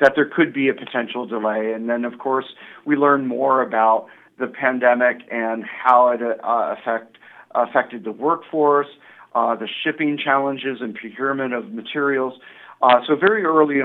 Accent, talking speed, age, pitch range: American, 155 wpm, 40-59, 120-145 Hz